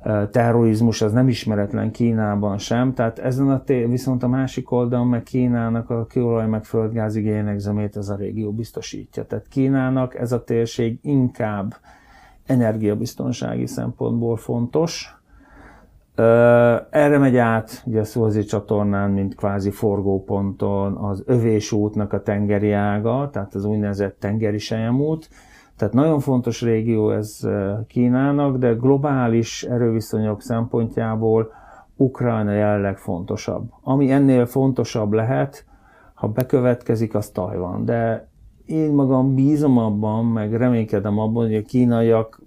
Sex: male